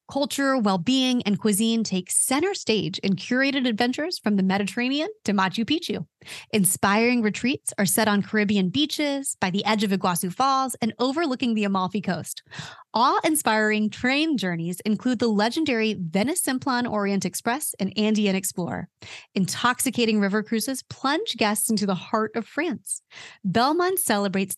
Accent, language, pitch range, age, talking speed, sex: American, English, 200-260 Hz, 20-39, 145 wpm, female